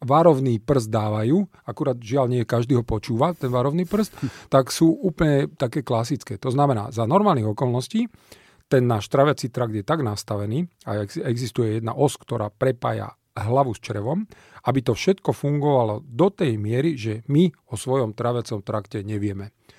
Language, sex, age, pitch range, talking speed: Slovak, male, 40-59, 115-145 Hz, 160 wpm